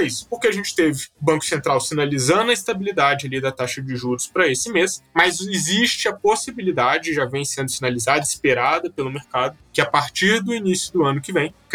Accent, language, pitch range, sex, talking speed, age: Brazilian, Portuguese, 140-200 Hz, male, 195 wpm, 20-39